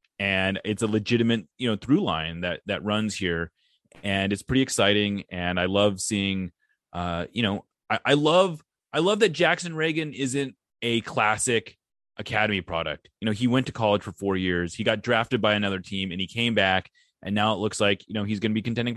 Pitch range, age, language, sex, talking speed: 90-120 Hz, 30-49, English, male, 210 wpm